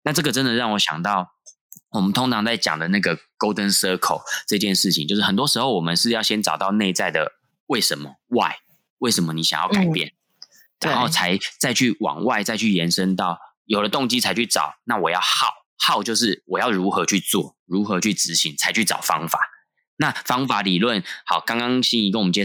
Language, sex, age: Chinese, male, 20-39